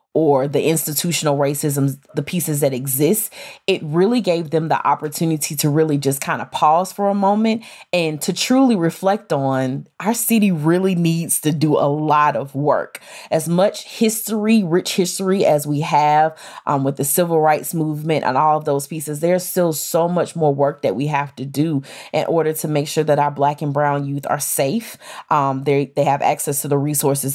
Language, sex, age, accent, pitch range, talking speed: English, female, 20-39, American, 145-190 Hz, 195 wpm